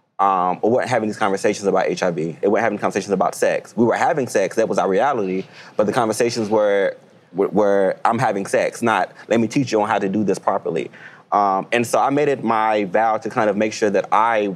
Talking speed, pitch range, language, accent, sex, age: 245 wpm, 100-120 Hz, English, American, male, 20-39